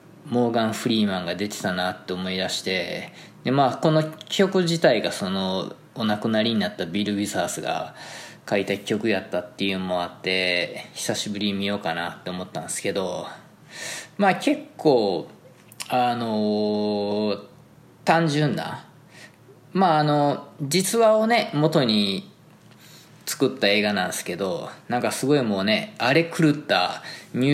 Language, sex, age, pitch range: Japanese, male, 20-39, 100-160 Hz